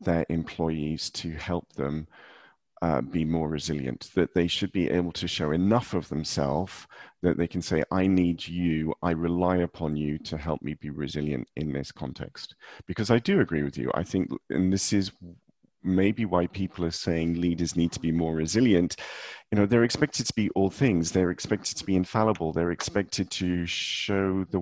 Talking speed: 190 wpm